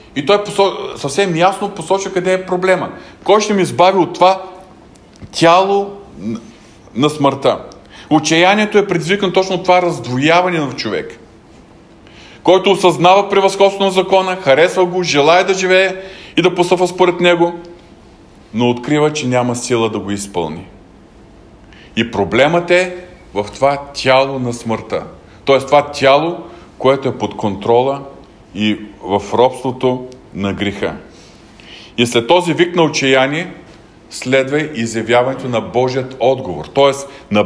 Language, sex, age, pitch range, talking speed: Bulgarian, male, 40-59, 115-180 Hz, 130 wpm